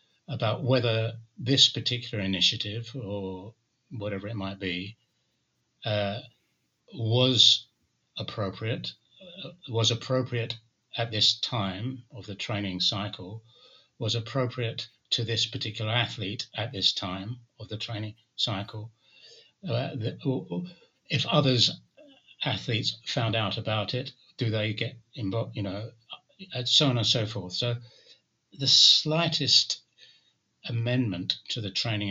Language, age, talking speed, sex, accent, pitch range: English, 60-79, 125 wpm, male, British, 100-125 Hz